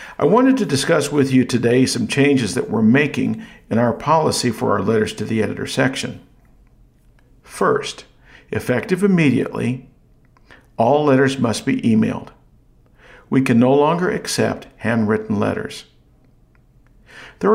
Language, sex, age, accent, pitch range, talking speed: English, male, 50-69, American, 130-170 Hz, 130 wpm